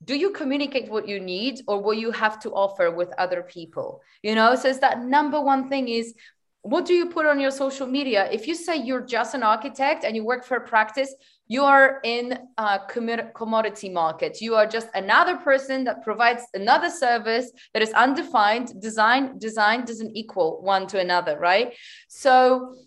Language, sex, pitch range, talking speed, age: English, female, 220-265 Hz, 190 wpm, 20-39